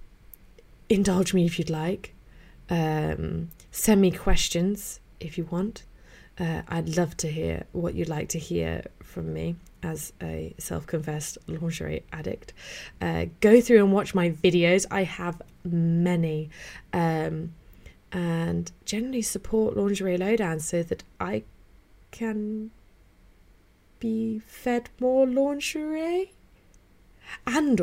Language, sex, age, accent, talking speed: English, female, 20-39, British, 115 wpm